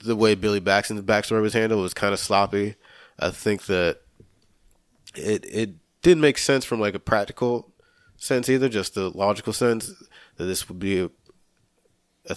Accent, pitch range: American, 90-100 Hz